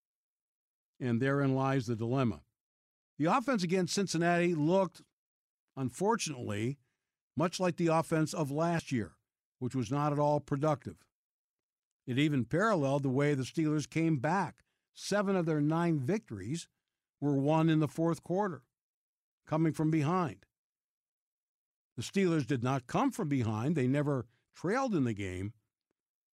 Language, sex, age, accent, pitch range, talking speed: English, male, 60-79, American, 130-170 Hz, 135 wpm